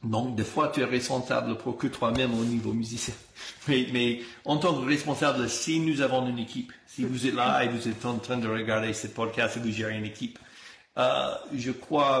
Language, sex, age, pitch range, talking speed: French, male, 50-69, 115-135 Hz, 220 wpm